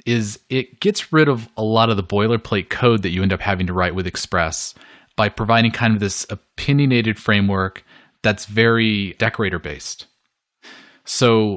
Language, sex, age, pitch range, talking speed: English, male, 30-49, 95-115 Hz, 160 wpm